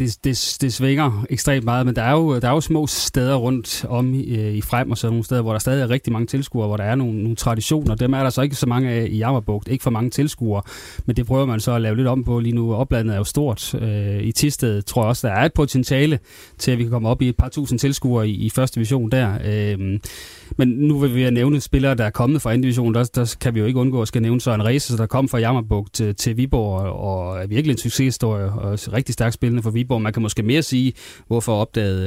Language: Danish